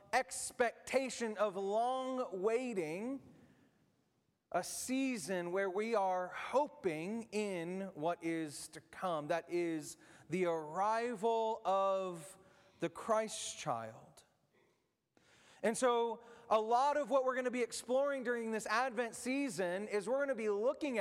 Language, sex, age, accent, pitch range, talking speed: English, male, 30-49, American, 205-265 Hz, 125 wpm